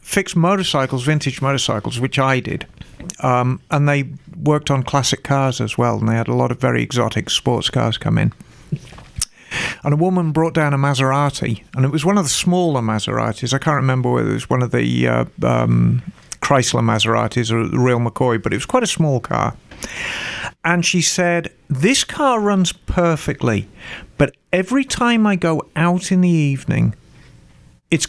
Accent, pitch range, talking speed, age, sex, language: British, 125-170 Hz, 180 wpm, 40-59, male, English